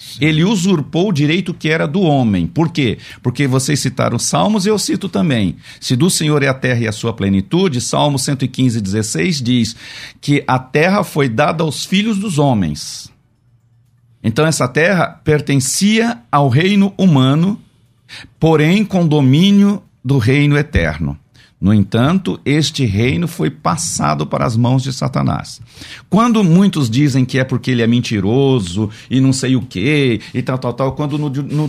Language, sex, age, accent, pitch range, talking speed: Portuguese, male, 50-69, Brazilian, 115-150 Hz, 165 wpm